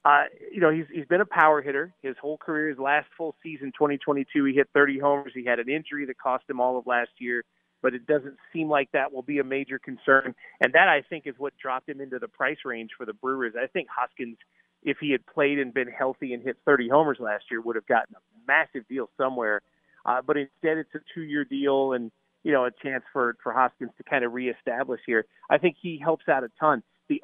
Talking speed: 240 wpm